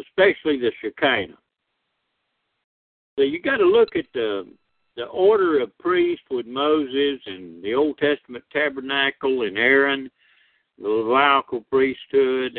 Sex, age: male, 60-79